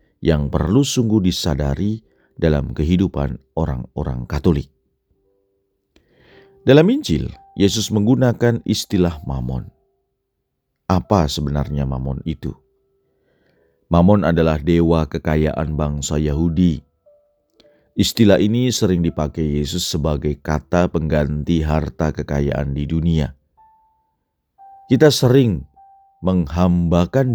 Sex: male